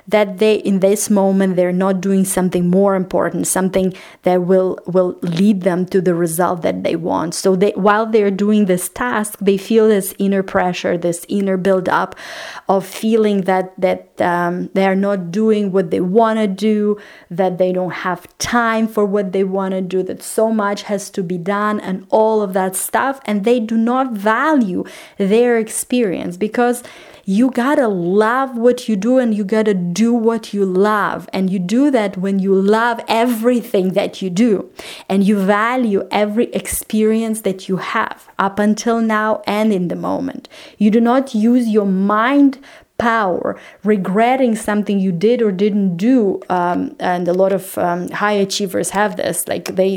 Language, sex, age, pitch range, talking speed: English, female, 30-49, 190-225 Hz, 175 wpm